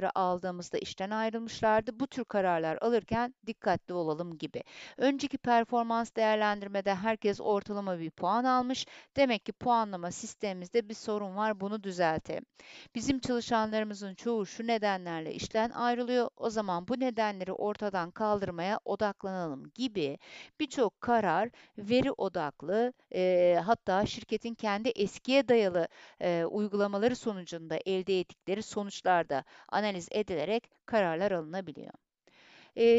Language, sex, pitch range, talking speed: Turkish, female, 190-240 Hz, 115 wpm